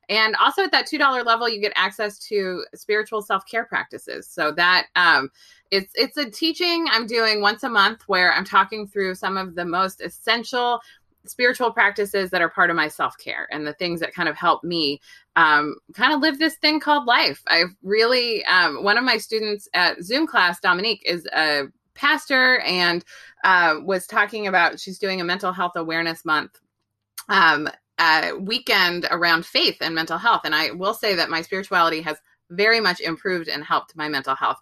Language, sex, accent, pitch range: English, female, American, 175-230 Hz